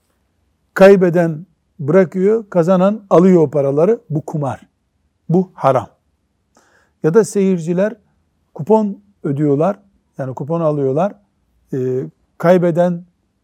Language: Turkish